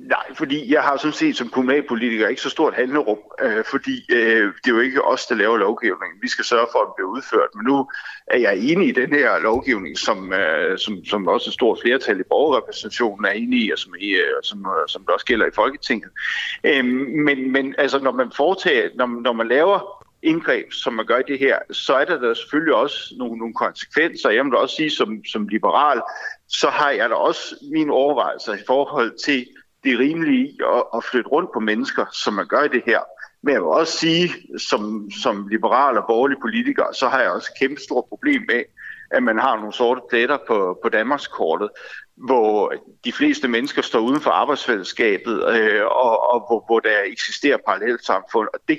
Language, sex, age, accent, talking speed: Danish, male, 60-79, native, 205 wpm